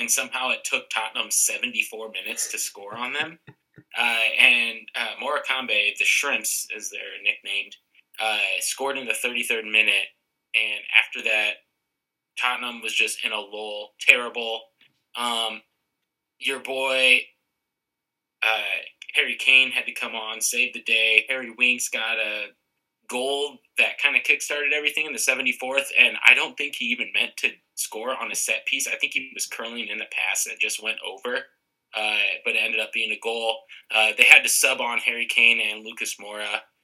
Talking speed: 175 wpm